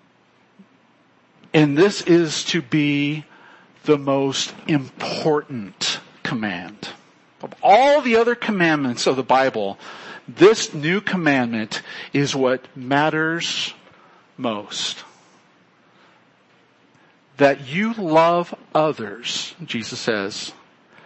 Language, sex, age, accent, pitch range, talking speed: English, male, 50-69, American, 130-170 Hz, 85 wpm